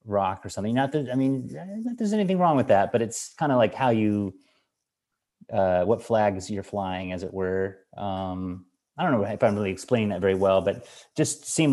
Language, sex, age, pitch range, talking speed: English, male, 30-49, 100-125 Hz, 220 wpm